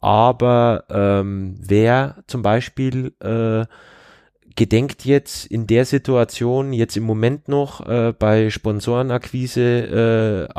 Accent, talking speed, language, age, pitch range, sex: German, 110 wpm, German, 20-39, 105-130 Hz, male